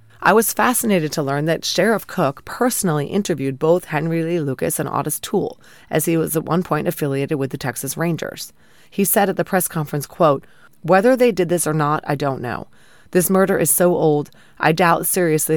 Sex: female